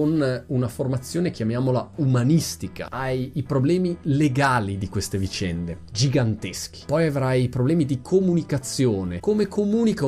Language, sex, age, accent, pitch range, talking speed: Italian, male, 30-49, native, 110-145 Hz, 120 wpm